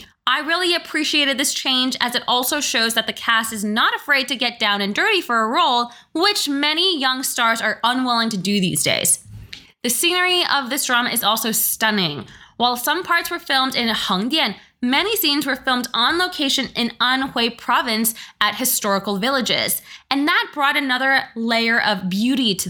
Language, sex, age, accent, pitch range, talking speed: English, female, 20-39, American, 210-280 Hz, 180 wpm